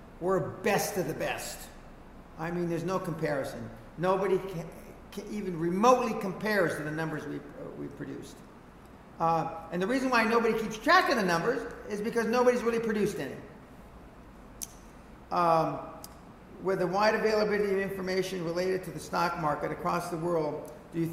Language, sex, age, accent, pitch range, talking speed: English, male, 50-69, American, 160-195 Hz, 160 wpm